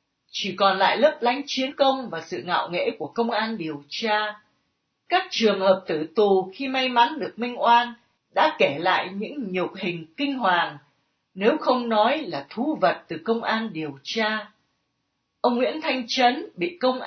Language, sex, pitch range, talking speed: Vietnamese, female, 185-255 Hz, 185 wpm